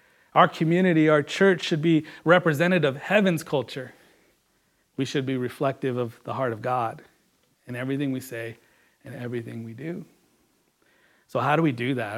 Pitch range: 130-165 Hz